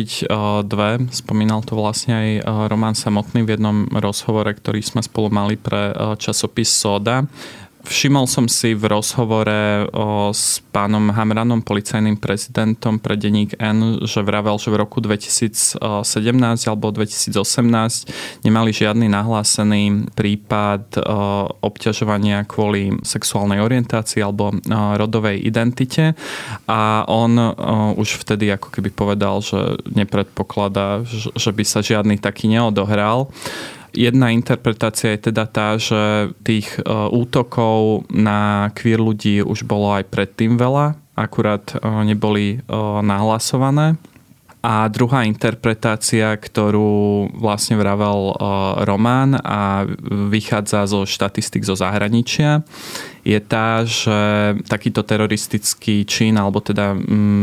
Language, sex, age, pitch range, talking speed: Slovak, male, 20-39, 105-115 Hz, 115 wpm